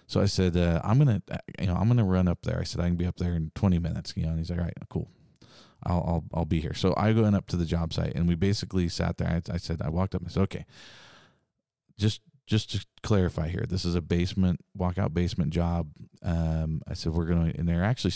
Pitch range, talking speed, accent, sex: 80-95 Hz, 270 wpm, American, male